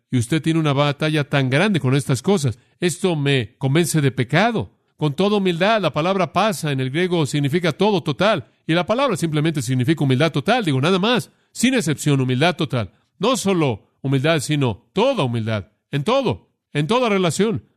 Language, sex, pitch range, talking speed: Spanish, male, 130-180 Hz, 175 wpm